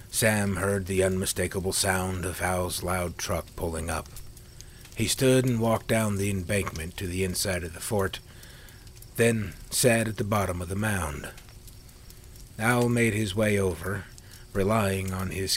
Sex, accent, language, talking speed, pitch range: male, American, English, 155 wpm, 90-115 Hz